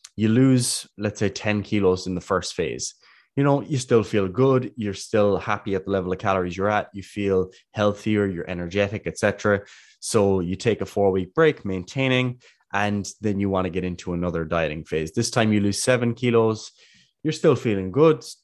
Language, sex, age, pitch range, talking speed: English, male, 20-39, 95-110 Hz, 195 wpm